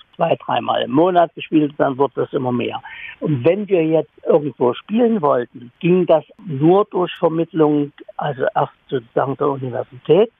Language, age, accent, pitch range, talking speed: German, 60-79, German, 135-170 Hz, 155 wpm